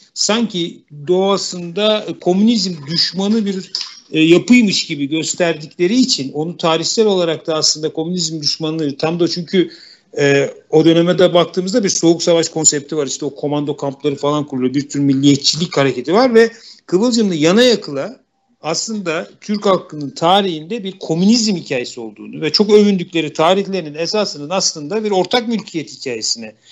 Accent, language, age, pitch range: native, Turkish, 50-69, 145-200 Hz